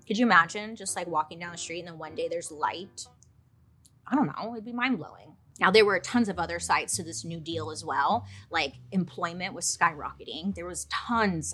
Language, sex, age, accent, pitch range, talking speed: English, female, 30-49, American, 155-225 Hz, 220 wpm